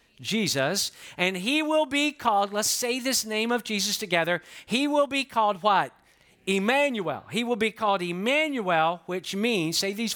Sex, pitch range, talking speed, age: male, 170-225 Hz, 165 wpm, 50-69